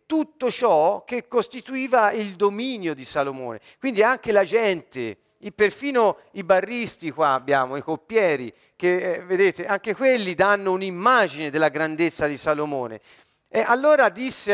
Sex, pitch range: male, 160-245 Hz